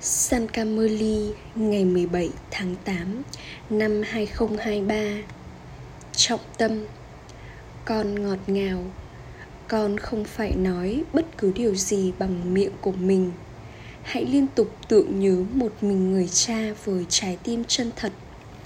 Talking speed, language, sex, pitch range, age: 130 wpm, Vietnamese, female, 190-245 Hz, 10-29